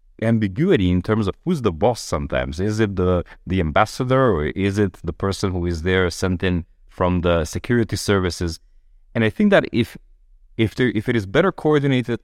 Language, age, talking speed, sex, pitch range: English, 30-49, 190 wpm, male, 85-120 Hz